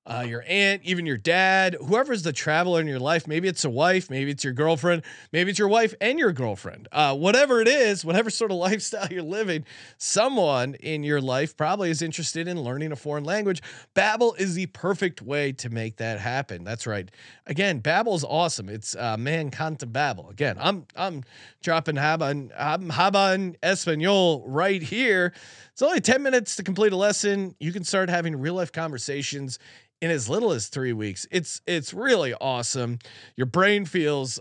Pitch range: 130-190 Hz